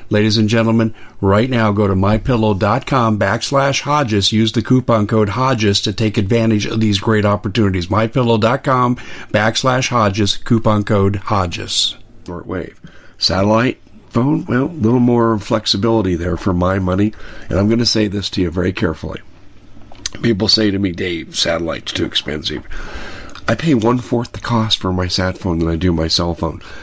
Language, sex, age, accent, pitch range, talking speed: English, male, 50-69, American, 90-115 Hz, 160 wpm